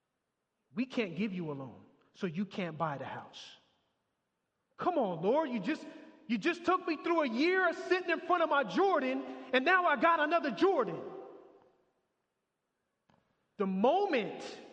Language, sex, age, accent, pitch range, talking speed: English, male, 30-49, American, 190-285 Hz, 160 wpm